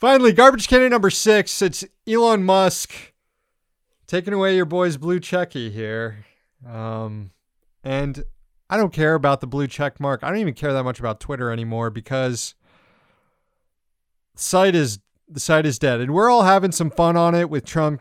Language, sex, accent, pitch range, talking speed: English, male, American, 115-155 Hz, 170 wpm